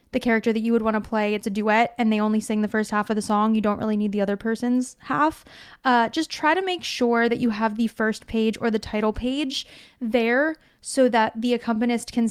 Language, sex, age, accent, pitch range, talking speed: English, female, 20-39, American, 215-260 Hz, 245 wpm